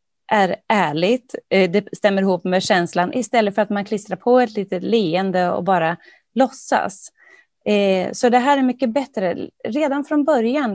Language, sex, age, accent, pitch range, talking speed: Swedish, female, 30-49, native, 190-250 Hz, 155 wpm